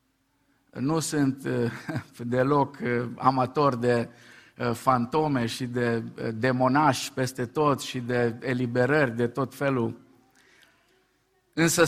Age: 50-69